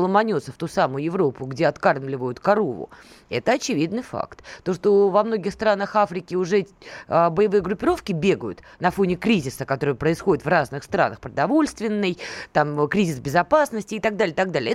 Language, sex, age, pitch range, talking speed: Russian, female, 20-39, 170-245 Hz, 150 wpm